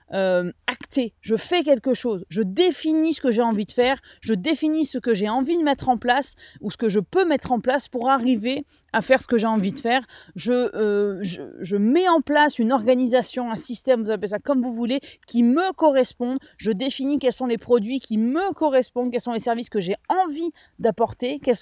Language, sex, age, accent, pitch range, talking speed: French, female, 30-49, French, 220-280 Hz, 220 wpm